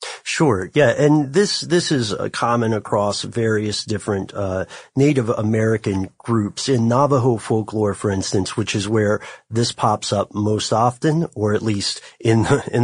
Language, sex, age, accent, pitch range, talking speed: English, male, 40-59, American, 105-130 Hz, 160 wpm